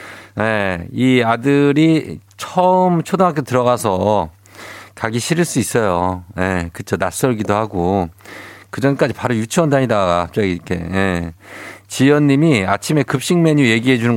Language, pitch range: Korean, 95-140 Hz